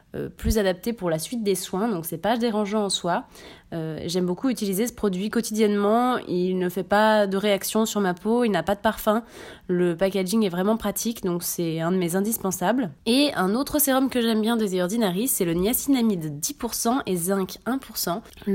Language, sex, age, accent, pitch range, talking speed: English, female, 20-39, French, 190-235 Hz, 200 wpm